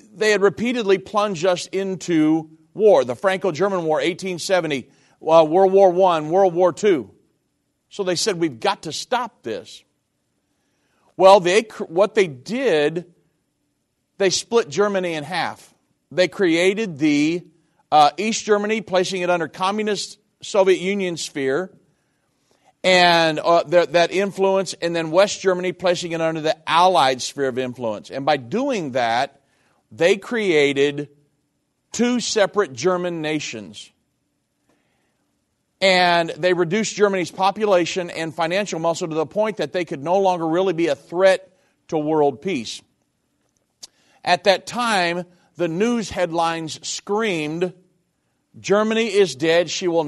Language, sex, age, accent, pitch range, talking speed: English, male, 40-59, American, 160-195 Hz, 130 wpm